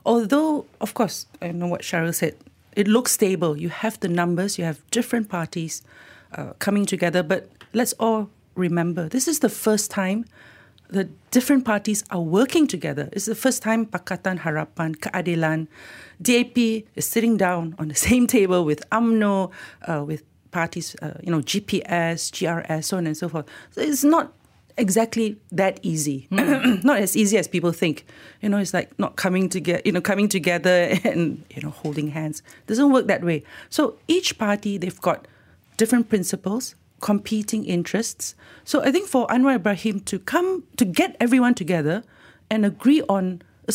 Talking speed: 170 wpm